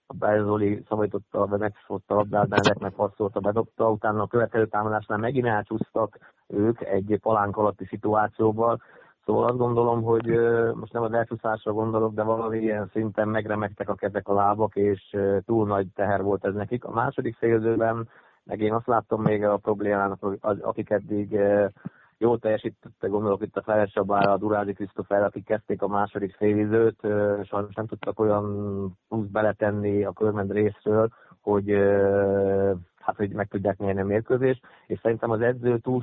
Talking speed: 155 wpm